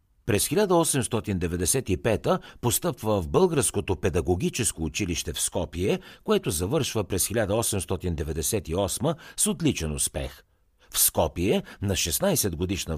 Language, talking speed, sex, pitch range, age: Bulgarian, 95 wpm, male, 85-120 Hz, 60-79